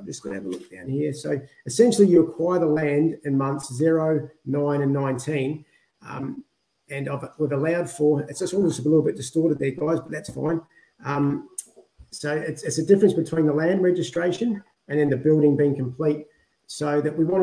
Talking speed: 195 wpm